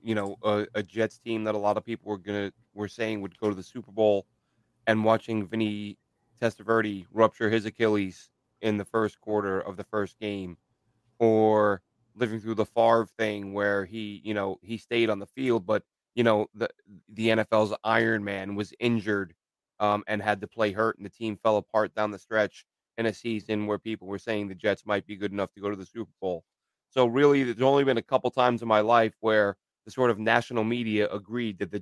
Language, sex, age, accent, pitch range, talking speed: English, male, 30-49, American, 105-120 Hz, 215 wpm